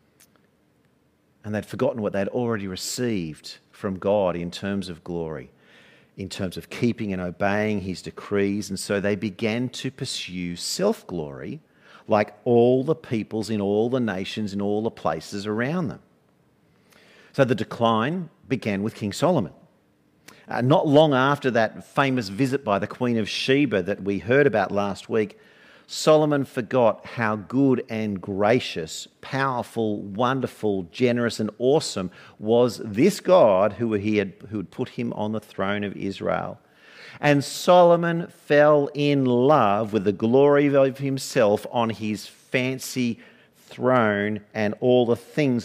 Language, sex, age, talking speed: English, male, 50-69, 140 wpm